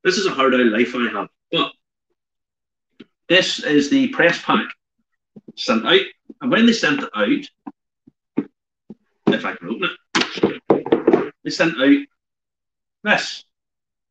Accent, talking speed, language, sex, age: British, 130 wpm, English, male, 40-59